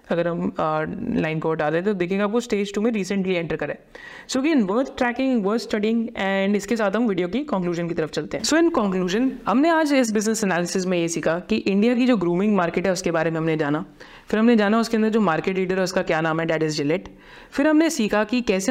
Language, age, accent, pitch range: Hindi, 30-49, native, 175-220 Hz